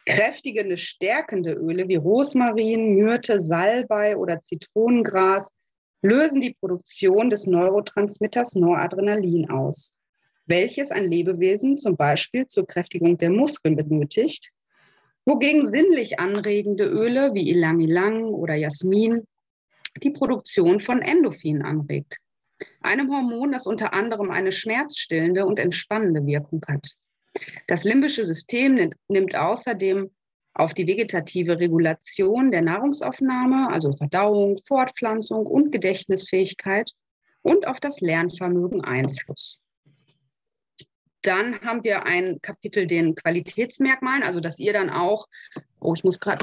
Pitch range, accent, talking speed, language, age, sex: 180-245 Hz, German, 110 wpm, German, 30-49, female